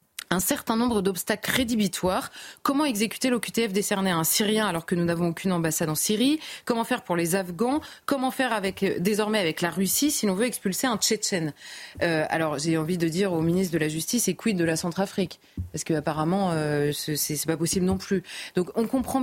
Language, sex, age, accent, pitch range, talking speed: French, female, 30-49, French, 175-225 Hz, 205 wpm